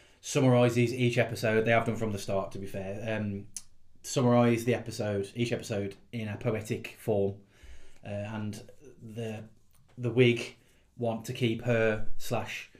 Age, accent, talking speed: 30-49, British, 150 wpm